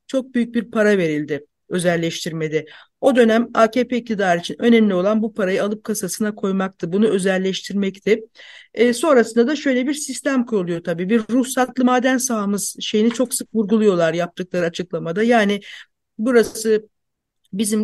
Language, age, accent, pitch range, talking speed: Turkish, 50-69, native, 220-260 Hz, 140 wpm